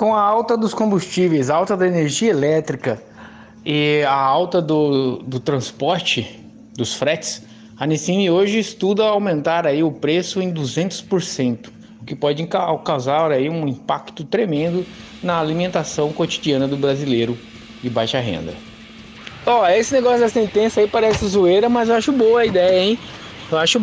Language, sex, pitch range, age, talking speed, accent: Portuguese, male, 160-225 Hz, 20-39, 145 wpm, Brazilian